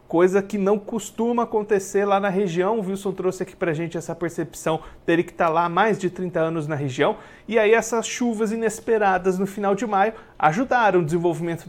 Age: 40-59